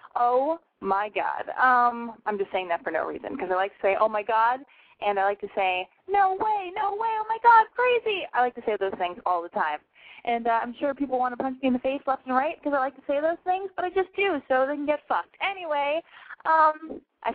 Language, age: English, 20-39